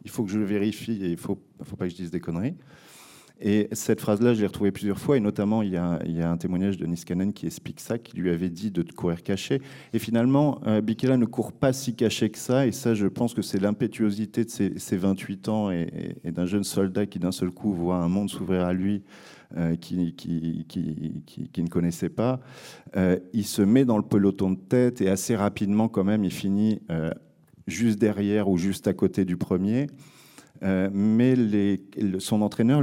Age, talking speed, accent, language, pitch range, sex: 40-59, 230 wpm, French, French, 95-115 Hz, male